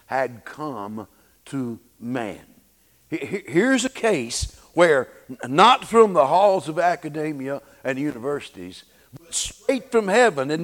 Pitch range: 115-185 Hz